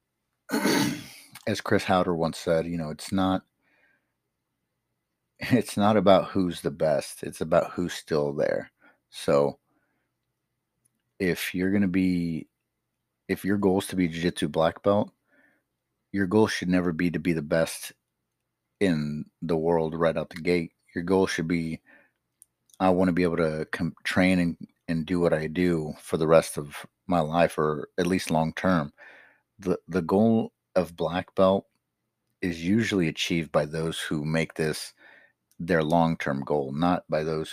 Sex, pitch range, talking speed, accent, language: male, 80-95 Hz, 160 wpm, American, English